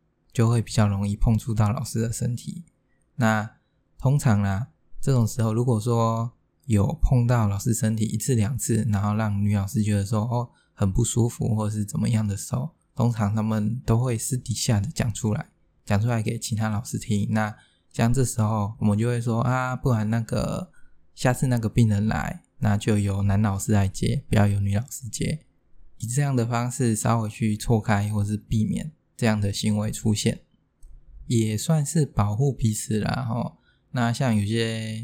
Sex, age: male, 20-39